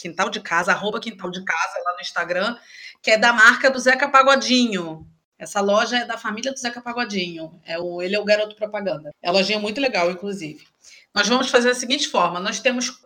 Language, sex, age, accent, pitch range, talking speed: Portuguese, female, 30-49, Brazilian, 205-265 Hz, 210 wpm